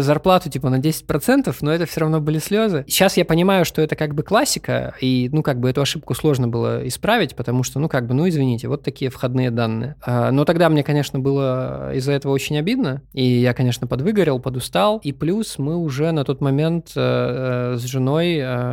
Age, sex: 20-39, male